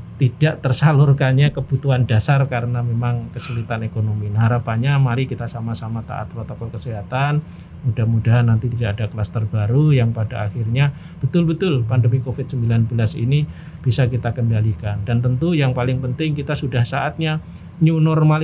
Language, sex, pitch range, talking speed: Indonesian, male, 120-140 Hz, 135 wpm